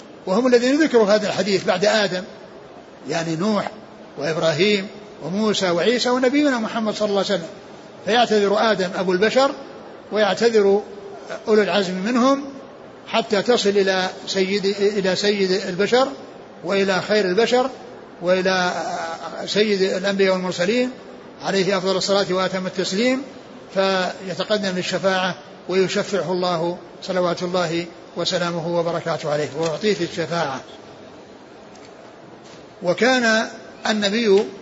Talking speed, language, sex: 95 wpm, Arabic, male